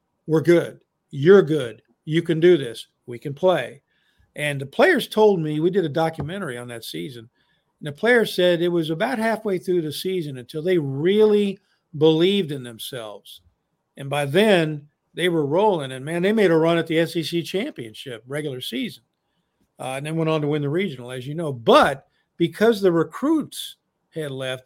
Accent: American